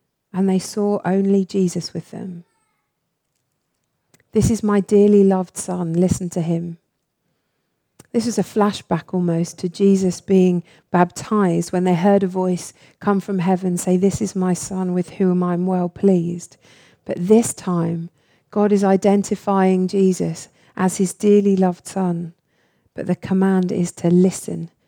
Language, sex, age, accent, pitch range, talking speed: English, female, 40-59, British, 175-200 Hz, 145 wpm